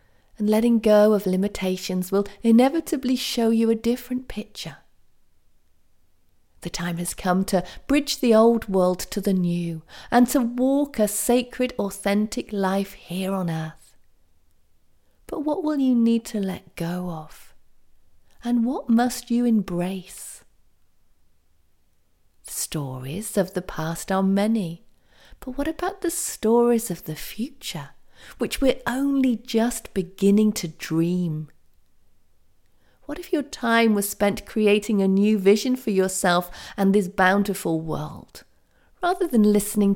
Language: English